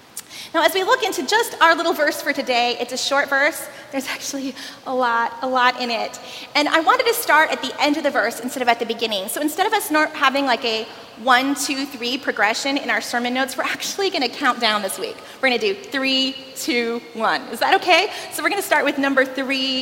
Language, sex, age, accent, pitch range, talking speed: English, female, 30-49, American, 225-300 Hz, 245 wpm